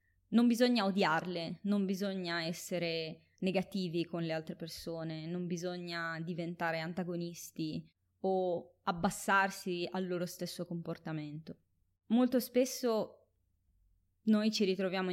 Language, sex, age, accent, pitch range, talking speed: Italian, female, 20-39, native, 160-195 Hz, 105 wpm